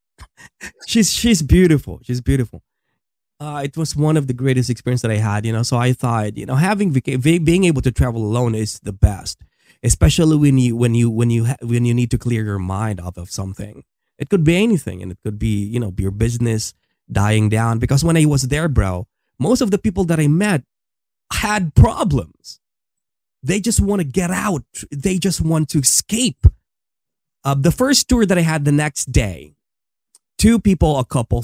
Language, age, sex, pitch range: English, 20-39, male, 110-155 Hz